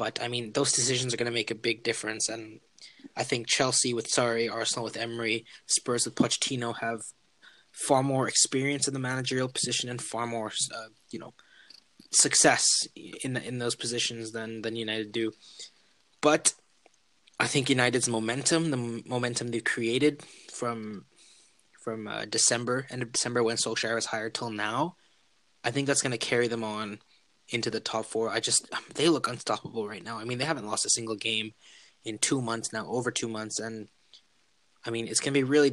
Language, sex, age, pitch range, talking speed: English, male, 20-39, 110-125 Hz, 185 wpm